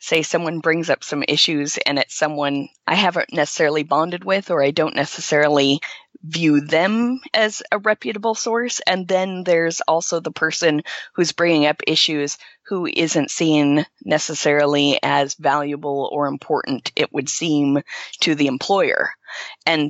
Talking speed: 150 wpm